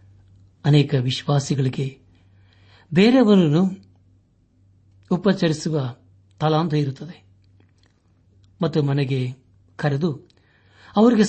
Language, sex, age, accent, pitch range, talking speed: Kannada, male, 60-79, native, 95-155 Hz, 55 wpm